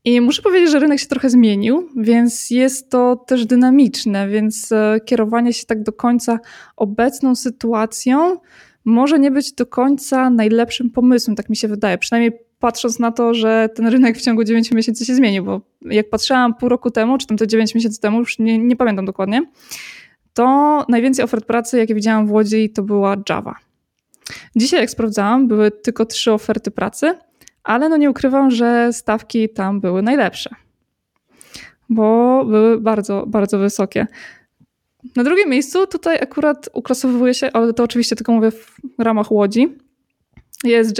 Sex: female